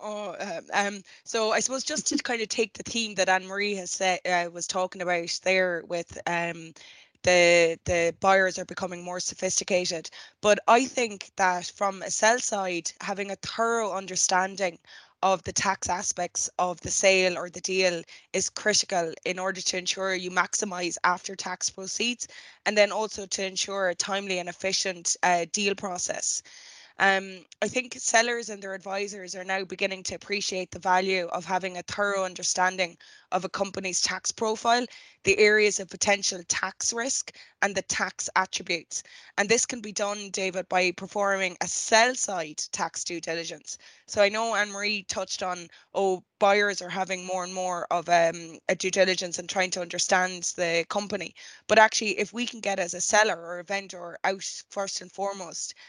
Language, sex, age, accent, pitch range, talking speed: English, female, 20-39, Irish, 180-205 Hz, 175 wpm